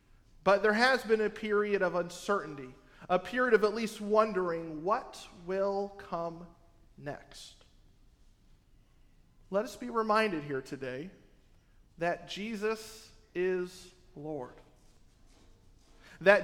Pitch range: 170-225 Hz